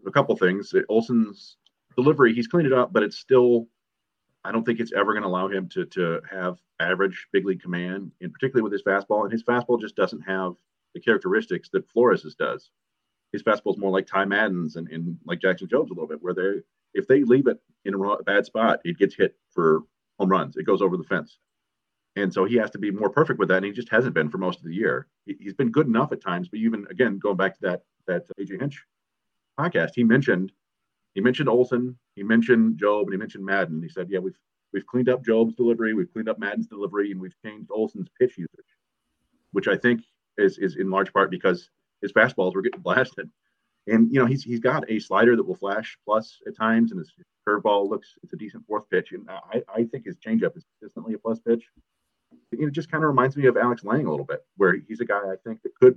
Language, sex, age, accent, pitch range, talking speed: English, male, 40-59, American, 95-125 Hz, 235 wpm